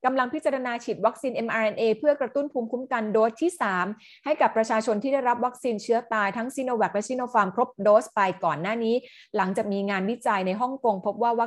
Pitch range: 190-240 Hz